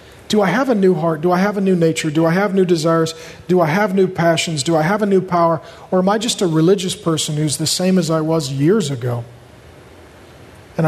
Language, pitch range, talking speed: English, 150-195 Hz, 245 wpm